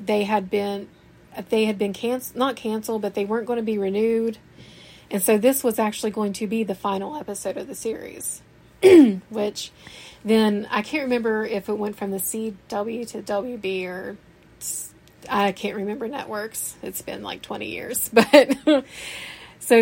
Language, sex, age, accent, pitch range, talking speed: English, female, 30-49, American, 195-225 Hz, 165 wpm